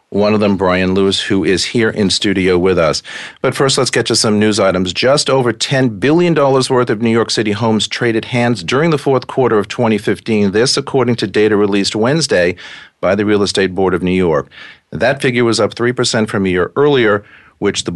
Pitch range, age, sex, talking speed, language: 95-120 Hz, 40-59, male, 210 wpm, English